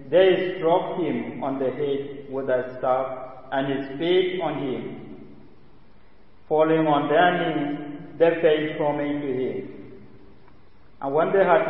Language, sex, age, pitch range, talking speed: English, male, 50-69, 125-150 Hz, 145 wpm